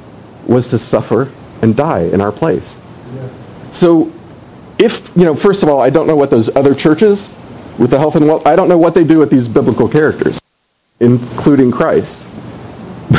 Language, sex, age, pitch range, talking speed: English, male, 40-59, 125-170 Hz, 175 wpm